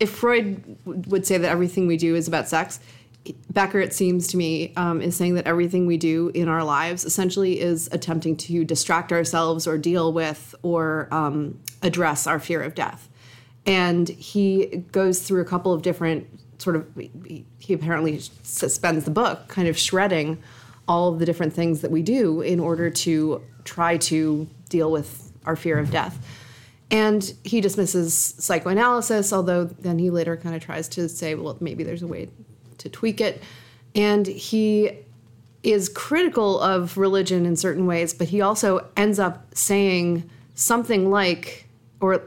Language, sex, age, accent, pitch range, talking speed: English, female, 30-49, American, 155-185 Hz, 170 wpm